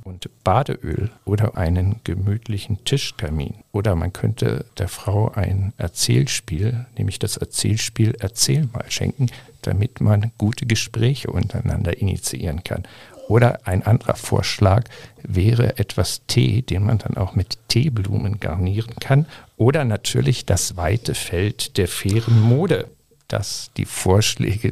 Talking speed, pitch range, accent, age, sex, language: 125 wpm, 100-120 Hz, German, 50-69, male, German